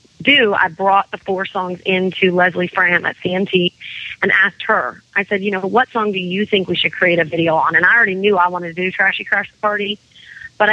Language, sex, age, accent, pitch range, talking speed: English, female, 30-49, American, 180-205 Hz, 235 wpm